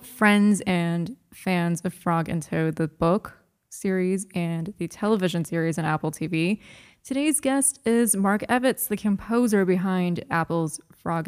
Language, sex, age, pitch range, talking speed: English, female, 20-39, 170-220 Hz, 145 wpm